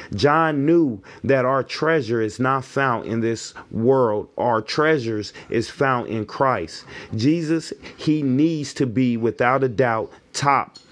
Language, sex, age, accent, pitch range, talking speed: English, male, 30-49, American, 115-145 Hz, 145 wpm